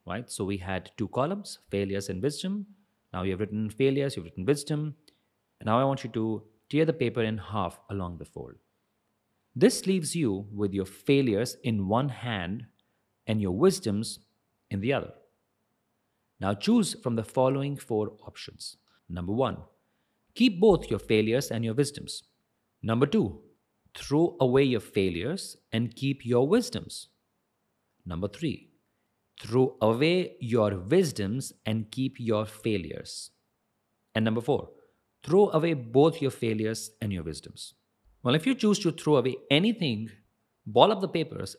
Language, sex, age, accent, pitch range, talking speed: English, male, 30-49, Indian, 105-140 Hz, 150 wpm